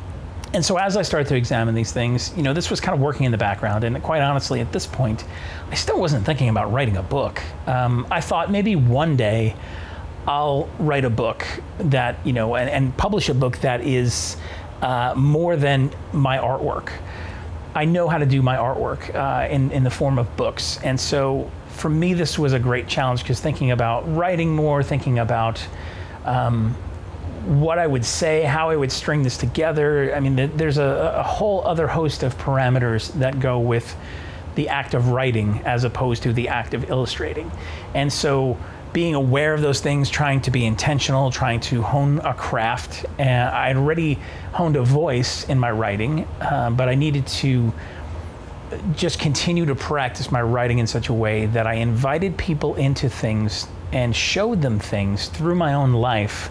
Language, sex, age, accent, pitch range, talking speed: English, male, 40-59, American, 110-145 Hz, 190 wpm